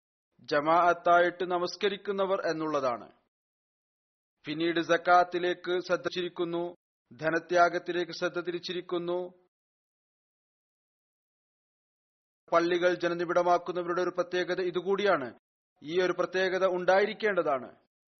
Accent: native